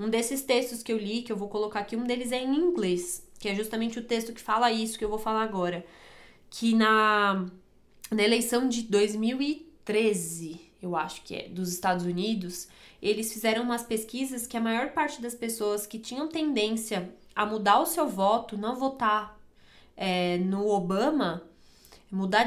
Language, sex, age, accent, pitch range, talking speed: Portuguese, female, 20-39, Brazilian, 210-270 Hz, 175 wpm